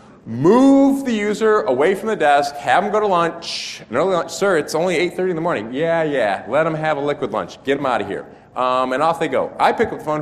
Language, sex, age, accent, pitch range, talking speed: English, male, 30-49, American, 140-185 Hz, 265 wpm